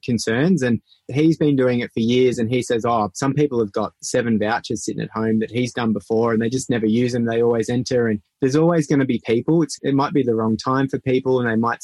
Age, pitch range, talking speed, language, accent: 20-39, 110-135 Hz, 270 wpm, English, Australian